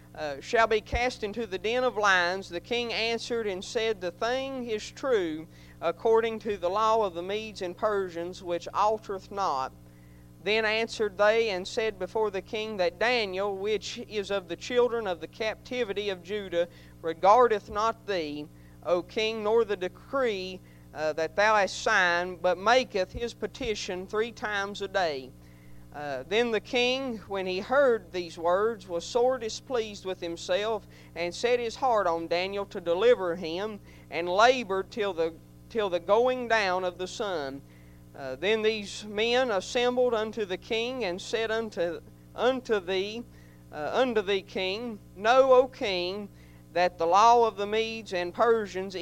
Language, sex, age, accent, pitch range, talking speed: English, male, 40-59, American, 175-220 Hz, 160 wpm